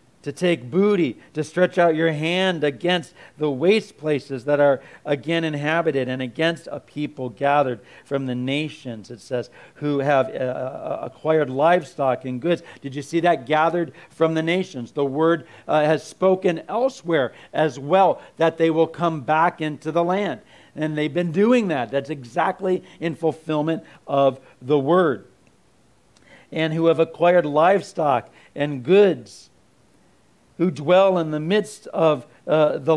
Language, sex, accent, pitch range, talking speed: English, male, American, 140-180 Hz, 155 wpm